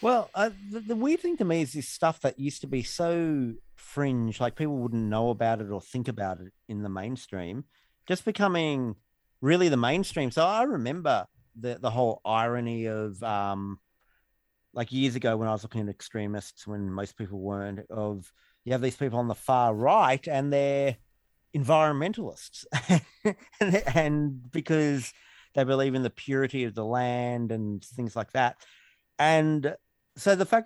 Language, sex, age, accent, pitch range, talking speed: English, male, 40-59, Australian, 110-160 Hz, 170 wpm